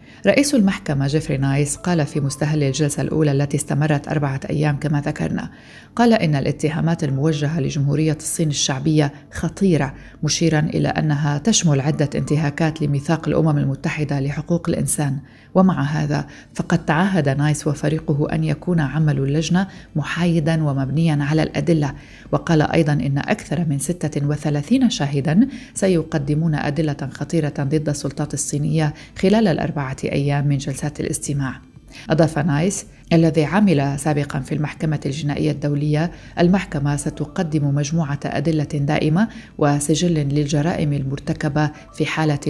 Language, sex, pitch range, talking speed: Arabic, female, 145-160 Hz, 125 wpm